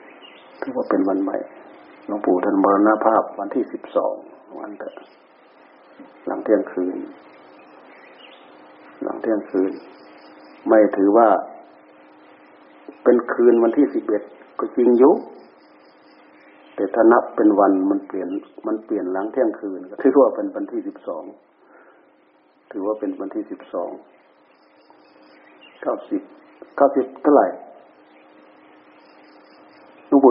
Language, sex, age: Thai, male, 60-79